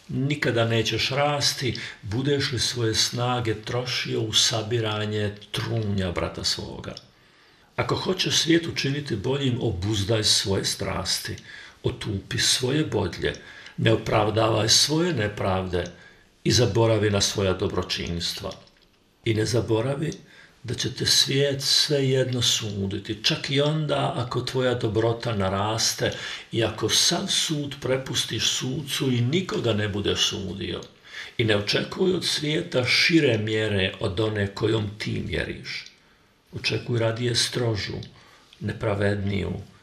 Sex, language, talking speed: male, Croatian, 115 wpm